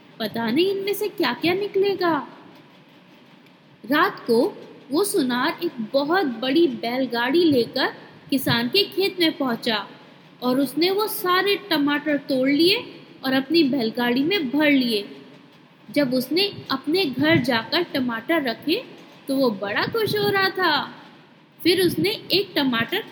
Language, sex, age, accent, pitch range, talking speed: Hindi, female, 20-39, native, 270-375 Hz, 135 wpm